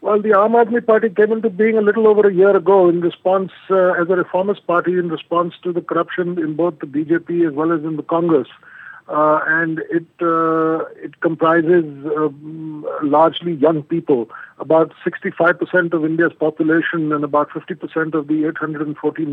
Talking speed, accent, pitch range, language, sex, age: 170 wpm, Indian, 150-170 Hz, English, male, 50-69